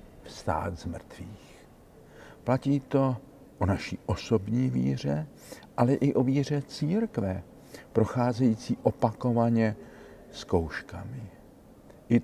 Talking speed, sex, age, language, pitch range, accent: 90 wpm, male, 60-79, Czech, 95-125 Hz, native